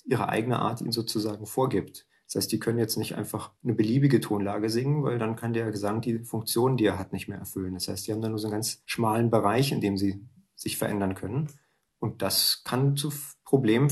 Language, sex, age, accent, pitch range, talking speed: German, male, 40-59, German, 105-130 Hz, 225 wpm